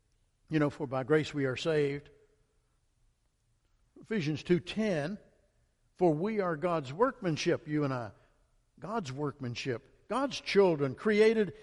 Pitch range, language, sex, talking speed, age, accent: 125-180 Hz, English, male, 120 wpm, 60-79, American